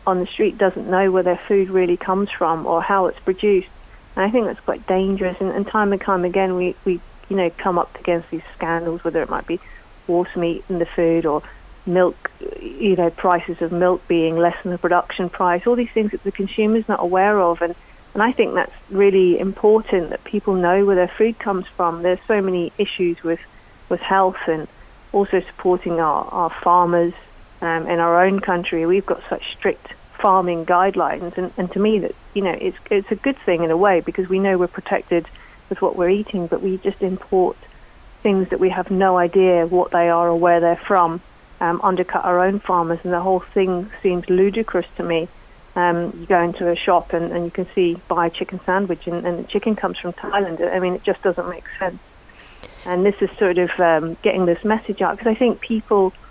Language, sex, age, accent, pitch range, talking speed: English, female, 30-49, British, 175-195 Hz, 215 wpm